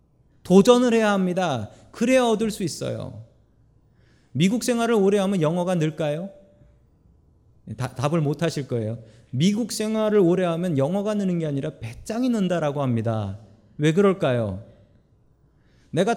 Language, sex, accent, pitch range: Korean, male, native, 120-195 Hz